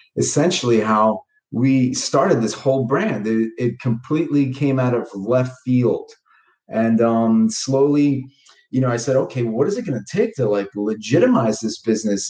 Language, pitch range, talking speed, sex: English, 115-140 Hz, 165 wpm, male